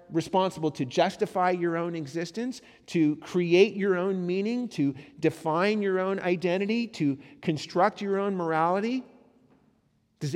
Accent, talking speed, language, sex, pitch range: American, 125 wpm, English, male, 145-200 Hz